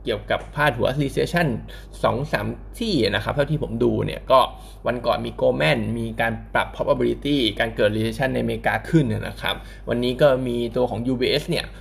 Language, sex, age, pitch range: Thai, male, 20-39, 110-140 Hz